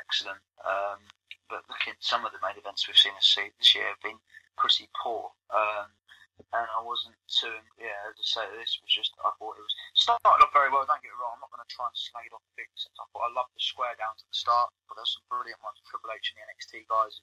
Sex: male